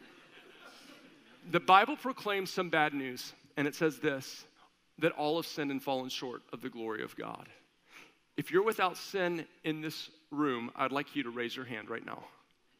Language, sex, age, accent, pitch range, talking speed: English, male, 50-69, American, 155-185 Hz, 180 wpm